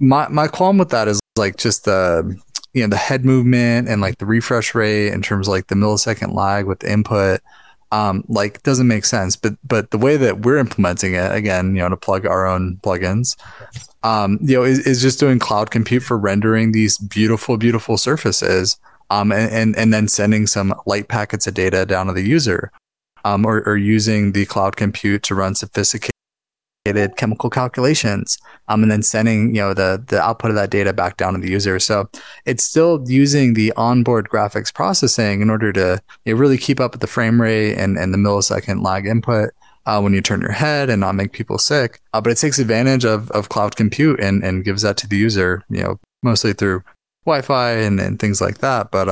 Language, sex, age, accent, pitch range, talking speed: English, male, 20-39, American, 100-120 Hz, 210 wpm